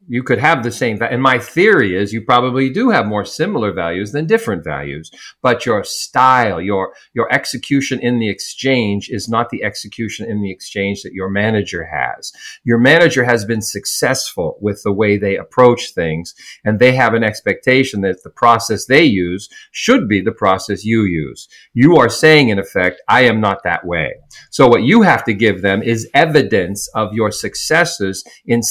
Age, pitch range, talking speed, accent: 50-69, 95-125 Hz, 185 wpm, American